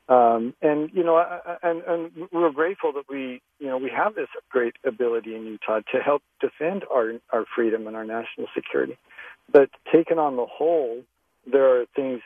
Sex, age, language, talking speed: male, 50-69, English, 185 wpm